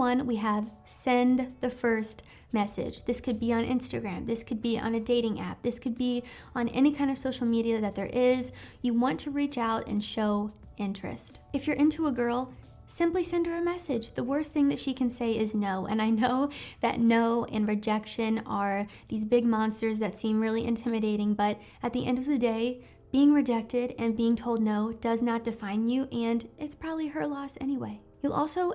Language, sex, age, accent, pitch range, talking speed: English, female, 20-39, American, 220-255 Hz, 205 wpm